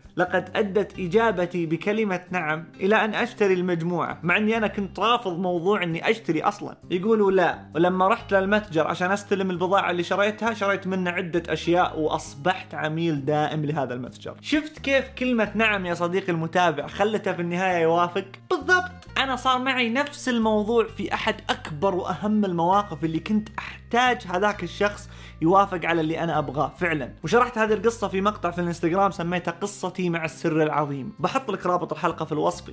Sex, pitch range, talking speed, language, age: male, 165-210 Hz, 160 wpm, English, 20-39